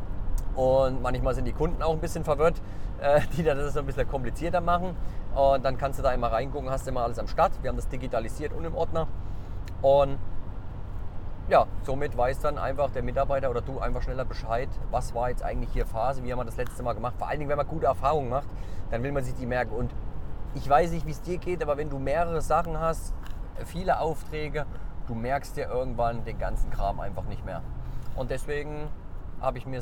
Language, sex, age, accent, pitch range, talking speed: German, male, 40-59, German, 100-135 Hz, 220 wpm